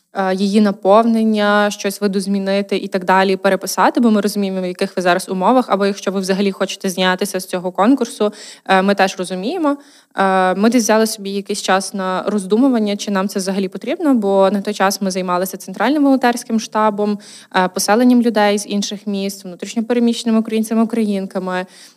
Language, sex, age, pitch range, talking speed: Ukrainian, female, 20-39, 190-220 Hz, 160 wpm